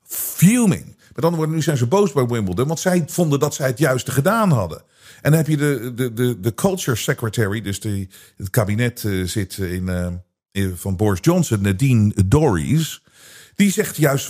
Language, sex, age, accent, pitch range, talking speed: Dutch, male, 50-69, Dutch, 120-190 Hz, 190 wpm